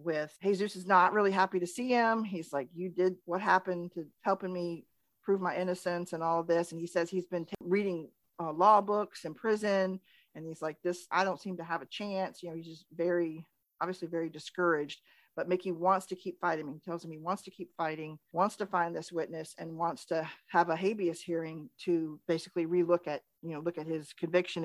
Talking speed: 220 wpm